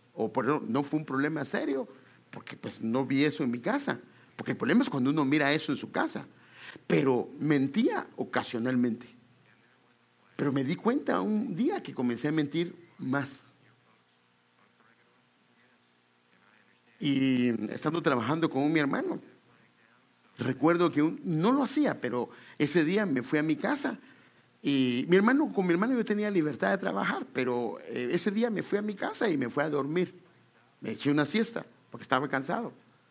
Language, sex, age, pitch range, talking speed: English, male, 50-69, 125-175 Hz, 170 wpm